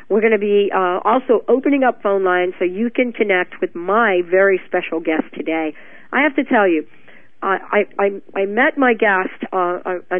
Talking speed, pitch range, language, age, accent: 195 wpm, 175-225 Hz, English, 50-69, American